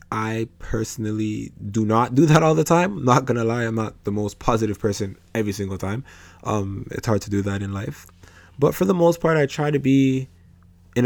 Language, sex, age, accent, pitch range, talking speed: English, male, 20-39, American, 100-125 Hz, 215 wpm